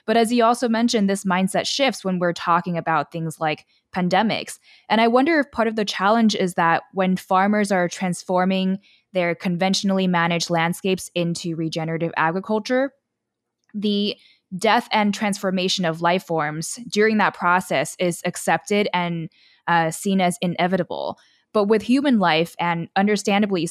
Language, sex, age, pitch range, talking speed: English, female, 10-29, 175-210 Hz, 150 wpm